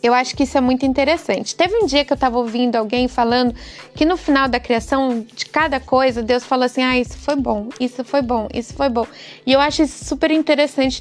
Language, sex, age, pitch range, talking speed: Portuguese, female, 20-39, 245-295 Hz, 235 wpm